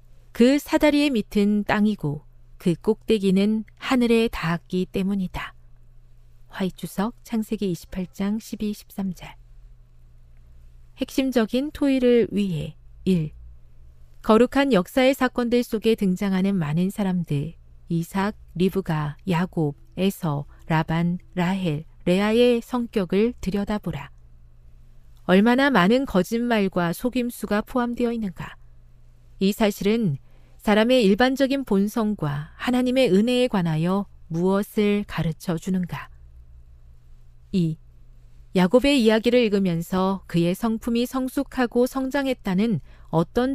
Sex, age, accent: female, 40-59, native